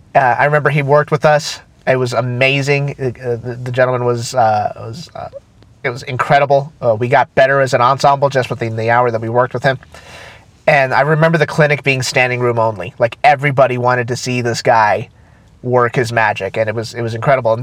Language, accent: English, American